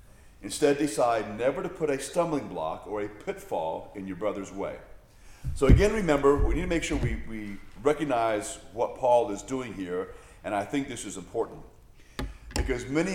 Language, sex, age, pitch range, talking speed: English, male, 40-59, 95-150 Hz, 180 wpm